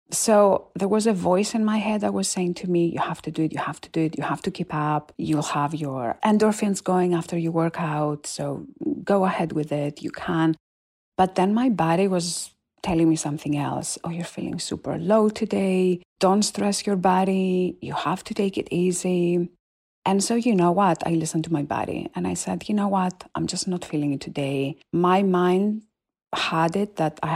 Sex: female